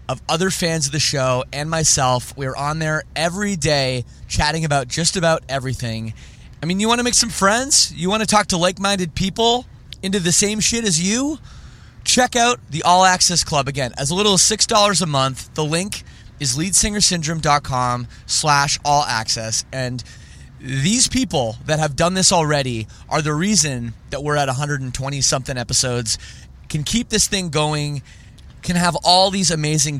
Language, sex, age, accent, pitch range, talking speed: English, male, 20-39, American, 140-230 Hz, 170 wpm